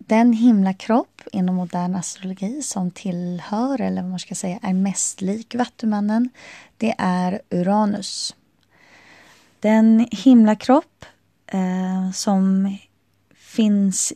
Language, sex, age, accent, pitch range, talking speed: Swedish, female, 20-39, native, 180-220 Hz, 100 wpm